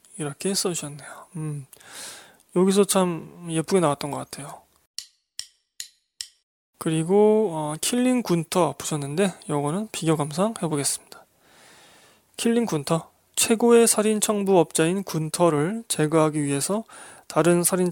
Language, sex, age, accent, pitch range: Korean, male, 20-39, native, 155-190 Hz